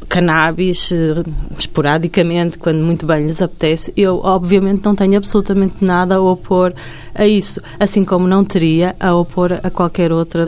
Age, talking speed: 20-39, 150 wpm